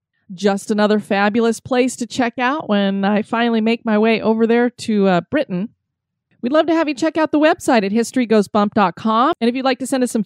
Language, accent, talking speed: English, American, 215 wpm